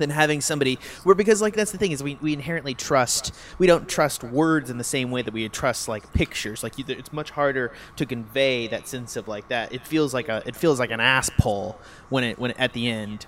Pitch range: 115-150 Hz